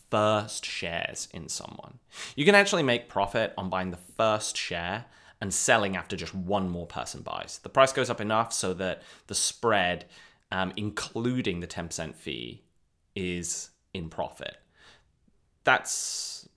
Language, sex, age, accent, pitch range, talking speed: English, male, 20-39, British, 95-120 Hz, 145 wpm